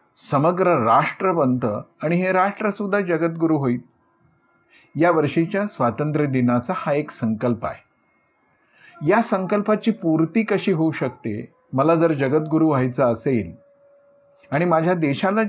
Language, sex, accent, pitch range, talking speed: Marathi, male, native, 125-195 Hz, 120 wpm